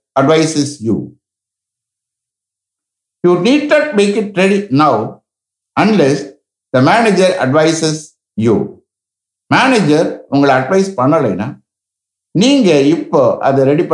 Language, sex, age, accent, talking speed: English, male, 60-79, Indian, 75 wpm